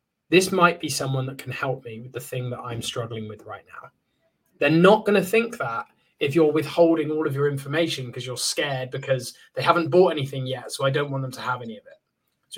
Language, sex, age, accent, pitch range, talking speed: English, male, 20-39, British, 135-180 Hz, 240 wpm